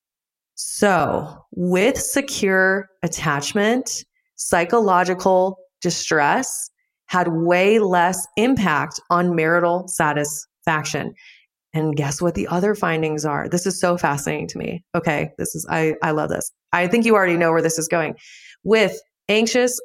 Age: 30-49